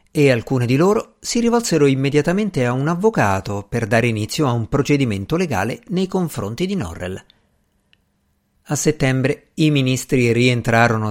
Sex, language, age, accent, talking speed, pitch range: male, Italian, 50-69, native, 140 wpm, 110-145 Hz